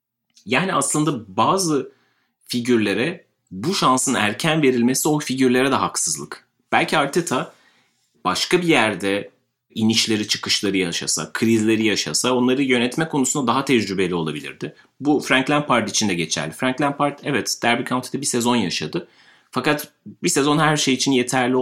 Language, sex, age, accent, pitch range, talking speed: Turkish, male, 30-49, native, 100-130 Hz, 135 wpm